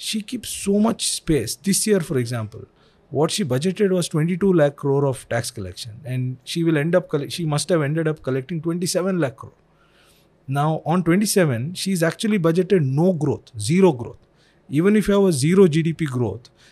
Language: Hindi